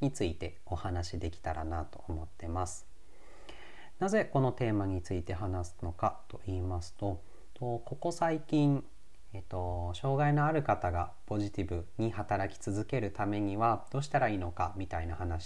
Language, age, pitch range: Japanese, 40-59, 90-120 Hz